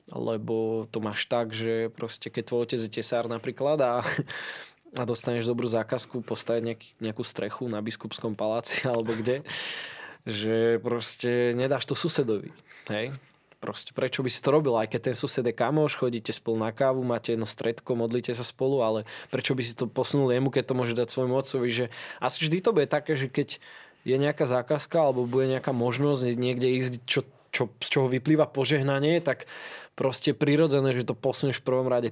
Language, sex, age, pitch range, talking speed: Slovak, male, 20-39, 115-145 Hz, 185 wpm